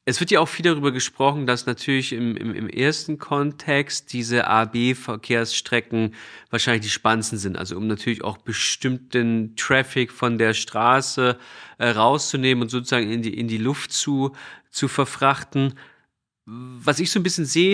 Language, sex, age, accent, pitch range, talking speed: German, male, 30-49, German, 120-155 Hz, 150 wpm